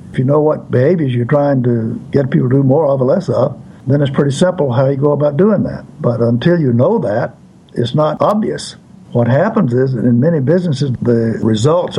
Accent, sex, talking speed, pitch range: American, male, 220 wpm, 120-145 Hz